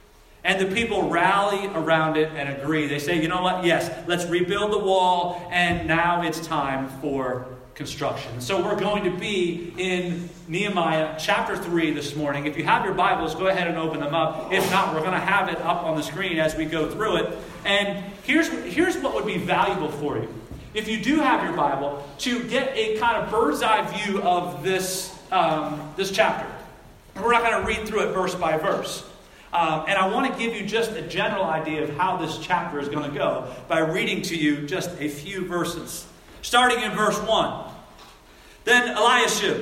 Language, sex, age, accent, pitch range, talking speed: English, male, 40-59, American, 160-210 Hz, 200 wpm